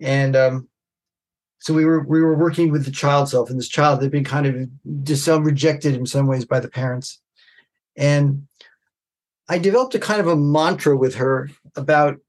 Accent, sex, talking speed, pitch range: American, male, 185 wpm, 135-160 Hz